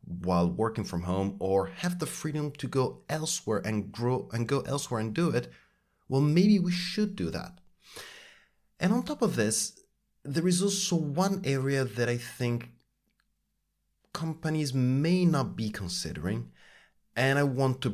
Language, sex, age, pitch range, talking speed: English, male, 30-49, 100-165 Hz, 155 wpm